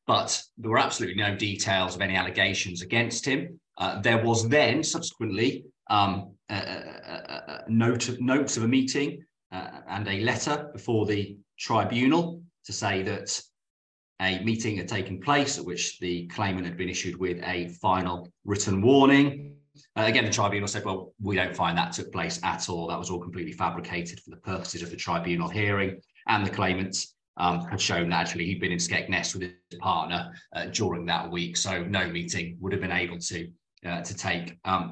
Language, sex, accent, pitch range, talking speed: English, male, British, 90-115 Hz, 180 wpm